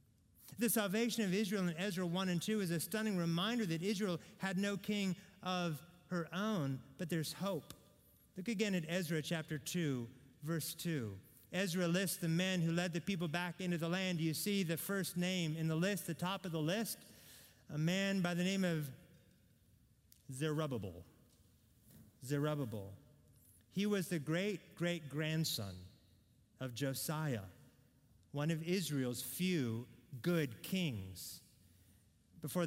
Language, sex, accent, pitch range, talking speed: English, male, American, 110-175 Hz, 150 wpm